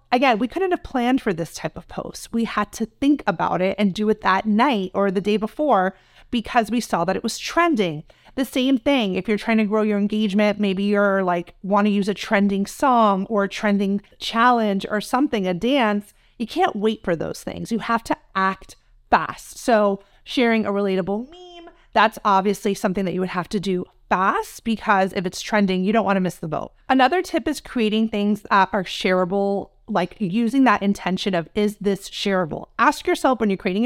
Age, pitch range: 30-49, 195-240 Hz